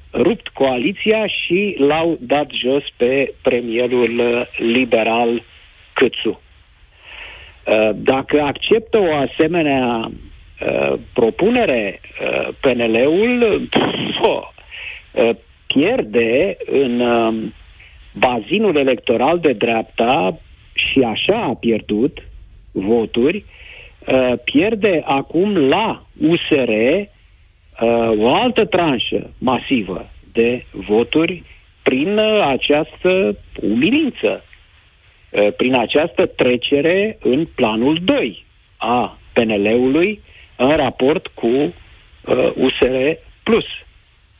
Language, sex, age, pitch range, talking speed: Romanian, male, 50-69, 105-160 Hz, 70 wpm